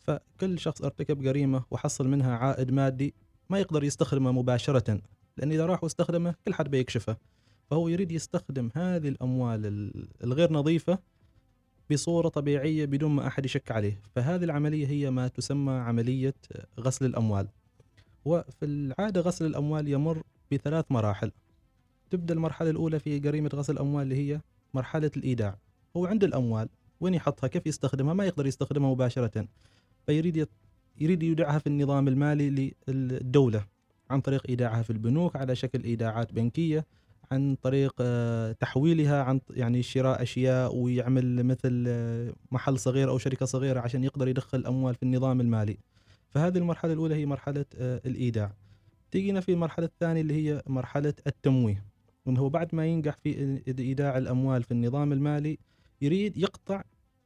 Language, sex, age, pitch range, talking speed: Arabic, male, 20-39, 120-150 Hz, 140 wpm